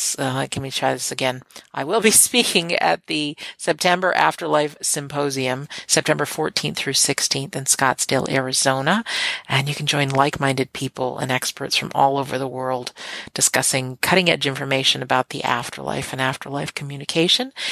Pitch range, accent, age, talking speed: 135-170 Hz, American, 50-69, 150 wpm